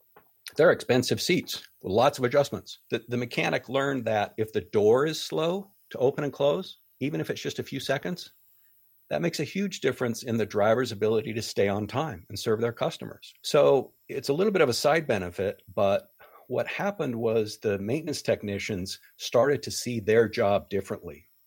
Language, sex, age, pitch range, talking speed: English, male, 60-79, 100-120 Hz, 185 wpm